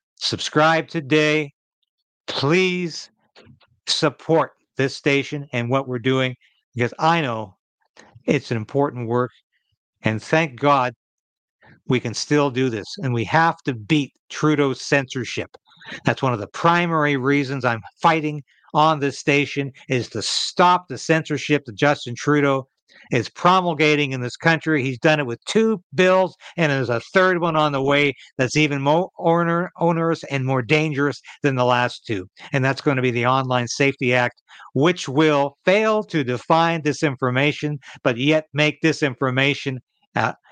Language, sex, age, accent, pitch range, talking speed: English, male, 60-79, American, 130-160 Hz, 150 wpm